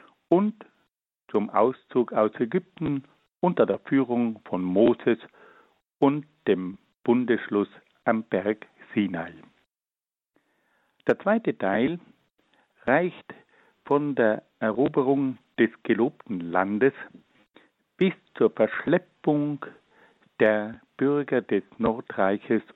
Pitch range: 110-150 Hz